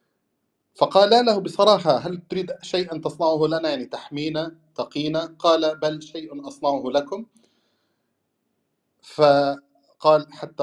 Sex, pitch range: male, 135-160 Hz